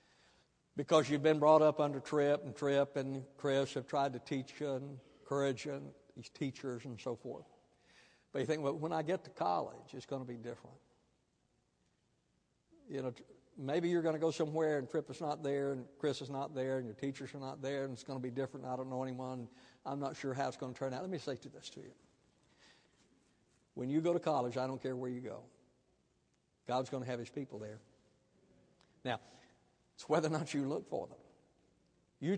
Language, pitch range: English, 130-160 Hz